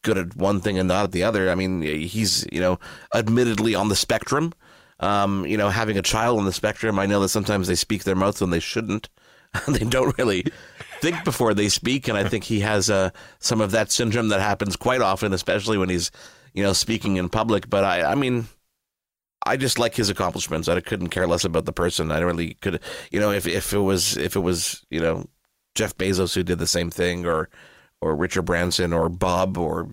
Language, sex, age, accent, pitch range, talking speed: English, male, 30-49, American, 90-105 Hz, 225 wpm